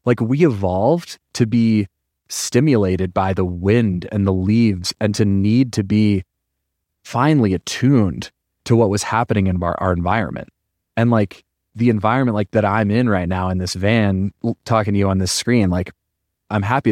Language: English